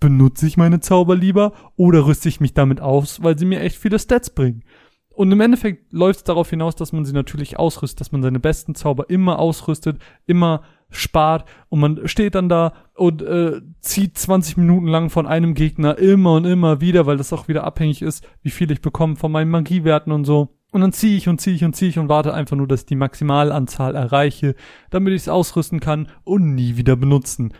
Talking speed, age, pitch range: 215 wpm, 30-49, 140-175 Hz